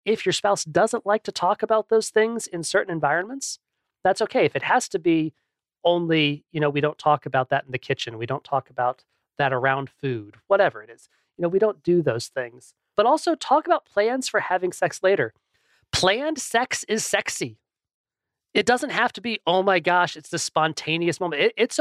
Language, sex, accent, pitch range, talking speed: English, male, American, 145-200 Hz, 205 wpm